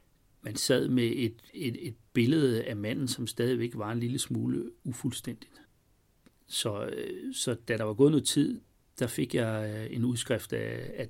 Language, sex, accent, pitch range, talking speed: Danish, male, native, 110-125 Hz, 170 wpm